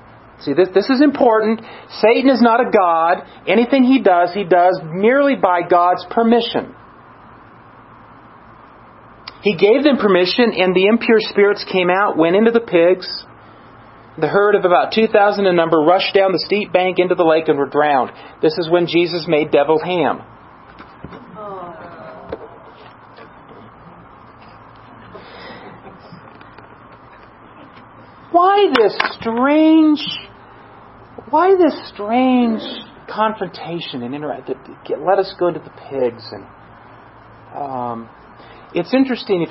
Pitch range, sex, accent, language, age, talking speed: 165-220 Hz, male, American, English, 40-59, 120 wpm